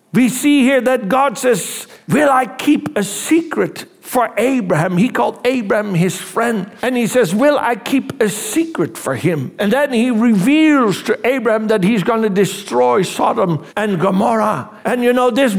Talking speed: 175 wpm